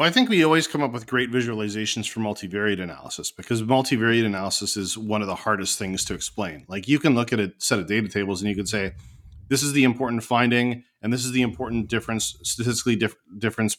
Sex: male